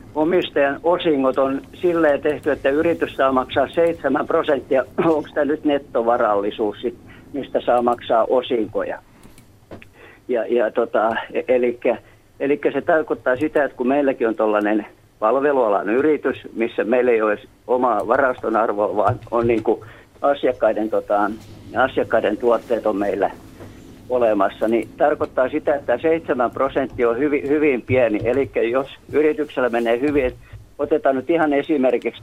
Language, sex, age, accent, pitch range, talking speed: Finnish, male, 50-69, native, 115-150 Hz, 130 wpm